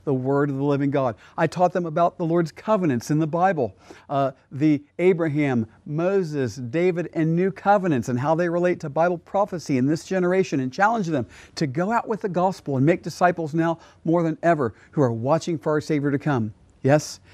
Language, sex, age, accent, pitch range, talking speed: English, male, 50-69, American, 115-165 Hz, 205 wpm